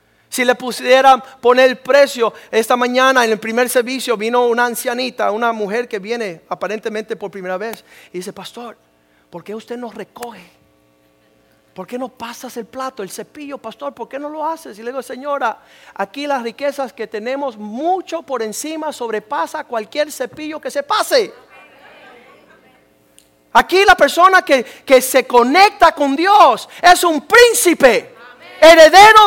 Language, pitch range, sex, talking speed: Spanish, 240-360 Hz, male, 155 wpm